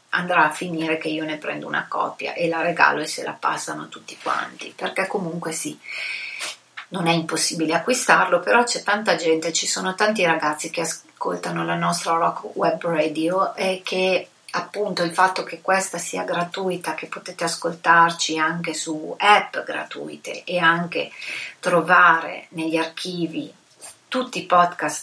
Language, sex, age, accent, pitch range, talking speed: Italian, female, 30-49, native, 160-185 Hz, 155 wpm